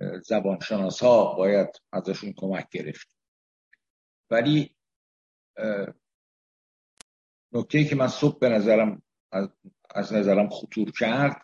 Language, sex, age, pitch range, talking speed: Persian, male, 60-79, 110-155 Hz, 90 wpm